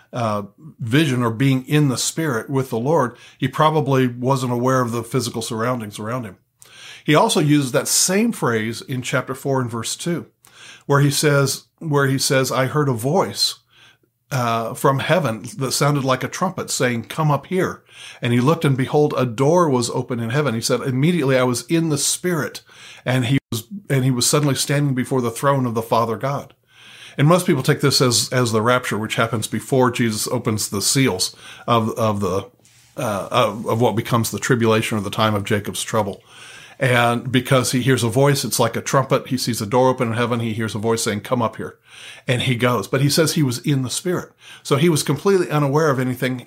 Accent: American